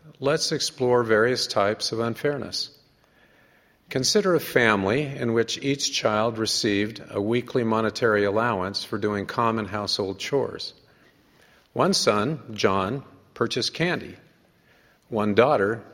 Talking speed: 115 wpm